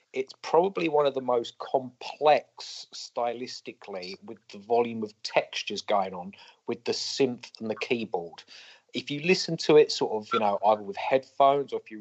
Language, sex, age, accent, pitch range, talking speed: English, male, 30-49, British, 110-140 Hz, 180 wpm